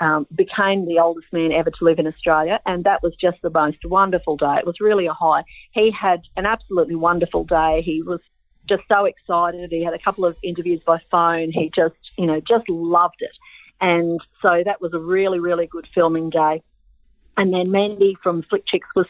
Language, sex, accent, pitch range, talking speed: English, female, Australian, 165-195 Hz, 205 wpm